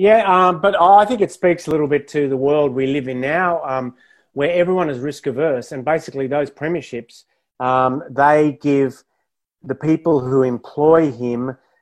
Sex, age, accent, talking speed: male, 30-49, Australian, 175 wpm